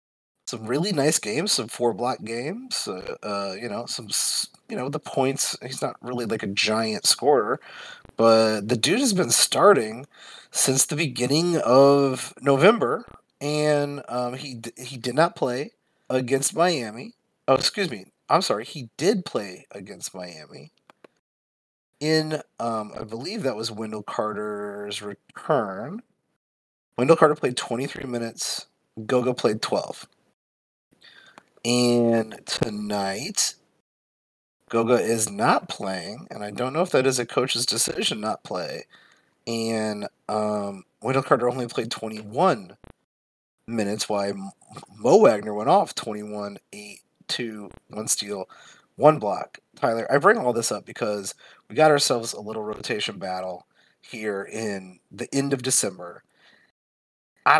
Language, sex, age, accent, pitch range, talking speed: English, male, 30-49, American, 105-135 Hz, 135 wpm